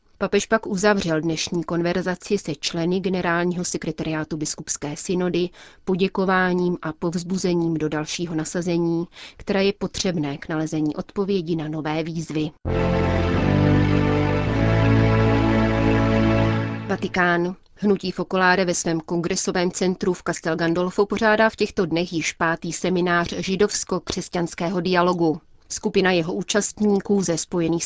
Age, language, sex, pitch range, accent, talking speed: 30-49, Czech, female, 160-190 Hz, native, 110 wpm